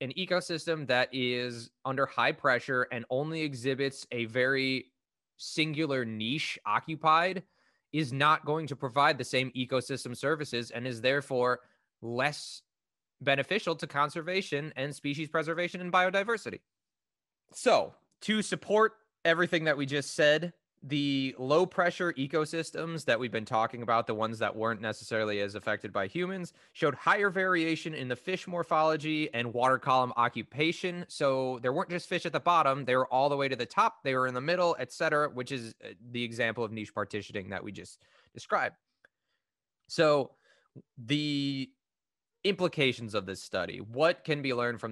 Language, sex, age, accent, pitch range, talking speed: English, male, 20-39, American, 115-155 Hz, 155 wpm